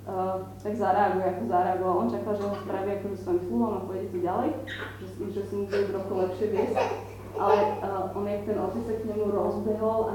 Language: Slovak